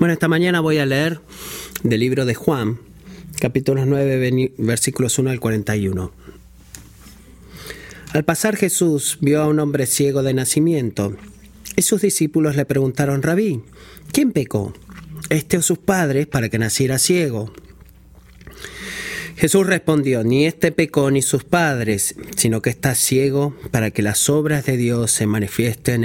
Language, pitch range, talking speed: Spanish, 120-160 Hz, 145 wpm